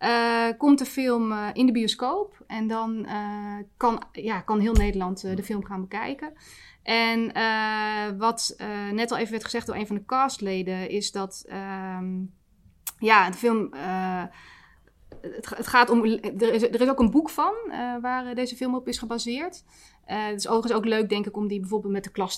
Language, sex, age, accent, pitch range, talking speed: Dutch, female, 20-39, Dutch, 200-235 Hz, 195 wpm